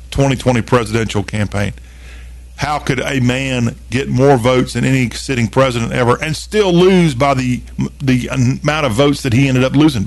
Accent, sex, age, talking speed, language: American, male, 50-69, 175 wpm, English